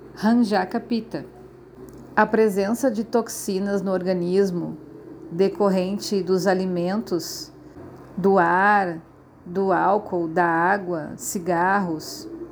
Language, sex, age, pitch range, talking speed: Portuguese, female, 40-59, 180-215 Hz, 85 wpm